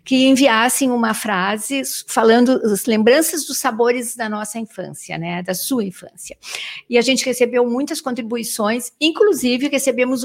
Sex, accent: female, Brazilian